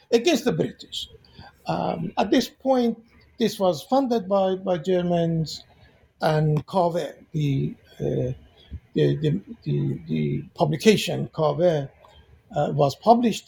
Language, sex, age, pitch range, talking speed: English, male, 60-79, 155-220 Hz, 115 wpm